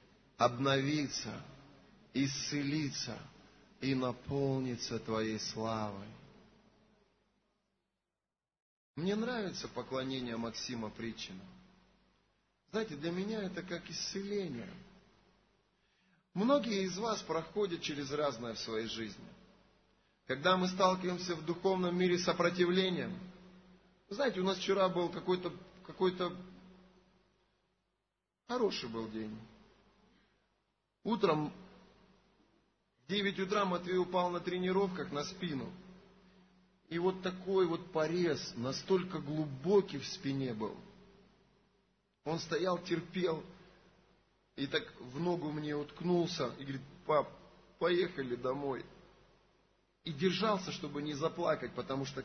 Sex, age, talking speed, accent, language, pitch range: male, 30-49, 95 wpm, native, Russian, 130-185 Hz